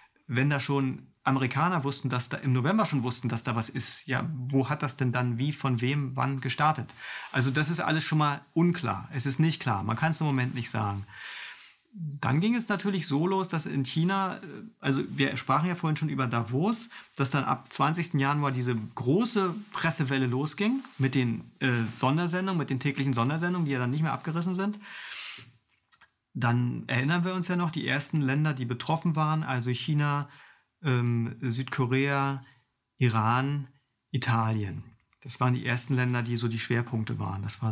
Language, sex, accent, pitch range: German, male, German, 125-155 Hz